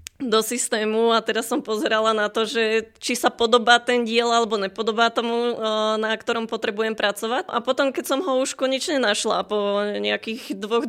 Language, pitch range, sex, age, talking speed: Slovak, 215-245 Hz, female, 20-39, 175 wpm